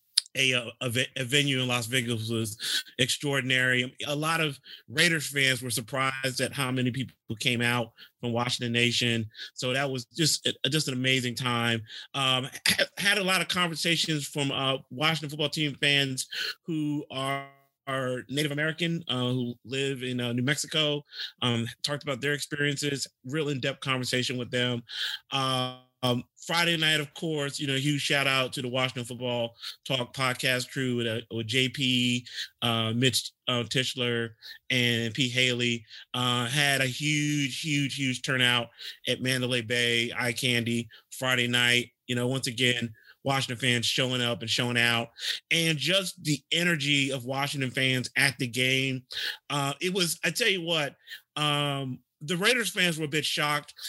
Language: English